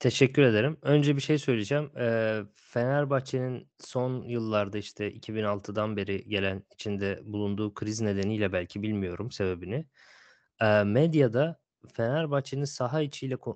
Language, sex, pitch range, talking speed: Turkish, male, 115-135 Hz, 105 wpm